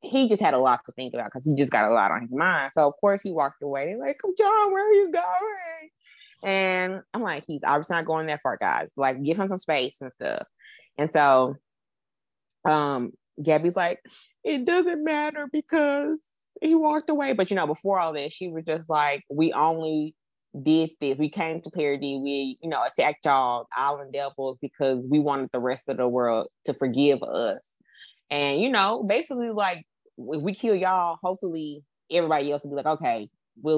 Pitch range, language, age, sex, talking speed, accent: 140-185 Hz, English, 20-39, female, 195 wpm, American